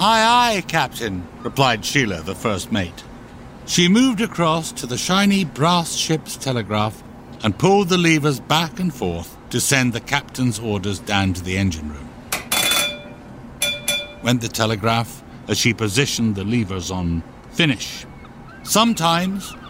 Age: 60-79